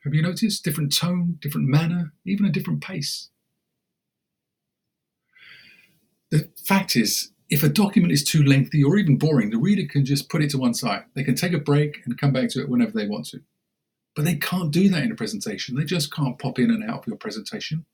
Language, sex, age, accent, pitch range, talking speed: English, male, 50-69, British, 140-195 Hz, 215 wpm